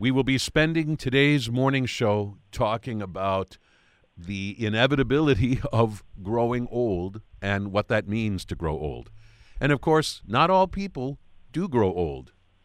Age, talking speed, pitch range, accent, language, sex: 50-69, 140 wpm, 95-120 Hz, American, English, male